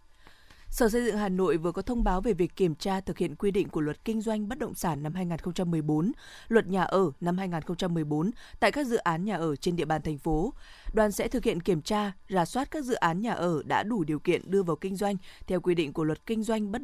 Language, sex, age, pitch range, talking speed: Vietnamese, female, 20-39, 170-215 Hz, 255 wpm